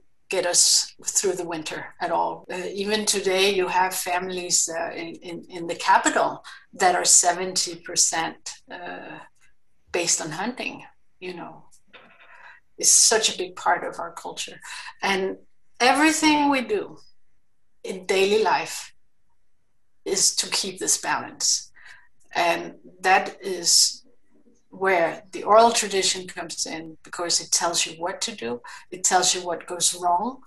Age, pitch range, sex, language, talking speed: 50-69, 175-215 Hz, female, English, 135 wpm